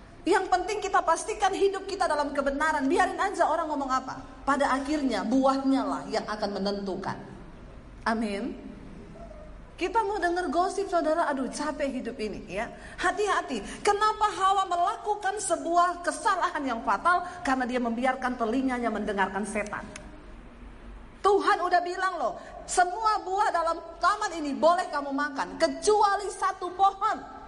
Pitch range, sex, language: 250-375 Hz, female, Indonesian